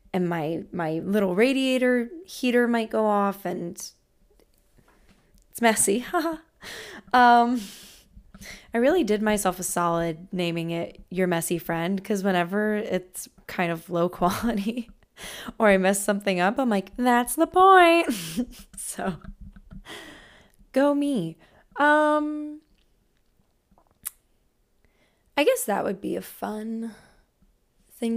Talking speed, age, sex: 115 wpm, 20-39, female